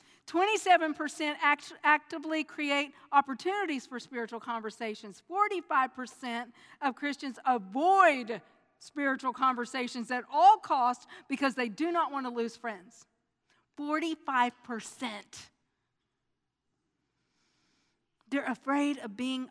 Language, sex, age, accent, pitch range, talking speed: English, female, 50-69, American, 235-300 Hz, 90 wpm